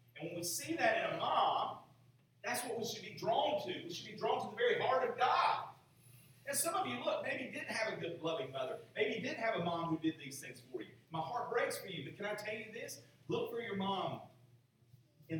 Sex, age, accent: male, 40-59, American